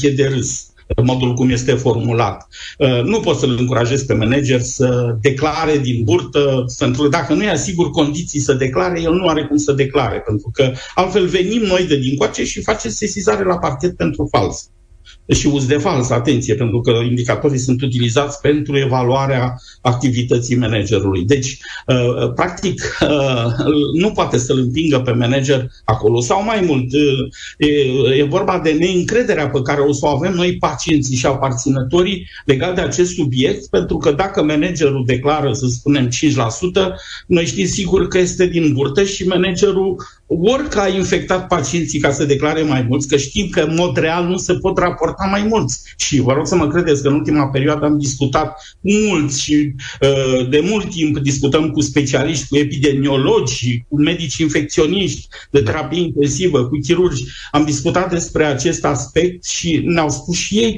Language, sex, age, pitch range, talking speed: Romanian, male, 50-69, 135-180 Hz, 165 wpm